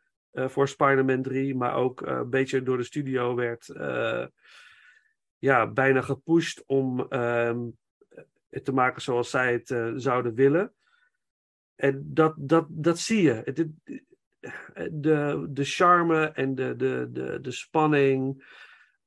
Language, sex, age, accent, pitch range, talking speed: Dutch, male, 50-69, Dutch, 135-170 Hz, 130 wpm